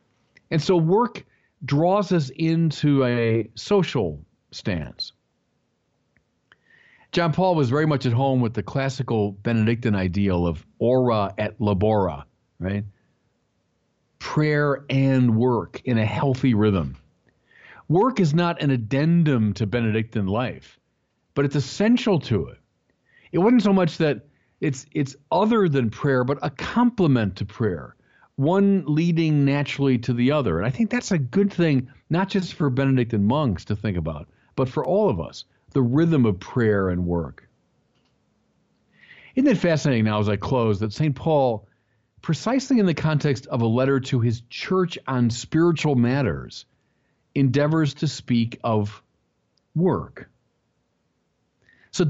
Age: 50-69